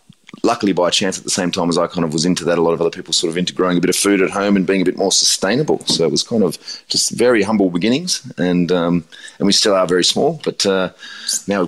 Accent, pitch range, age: Australian, 85-100 Hz, 30-49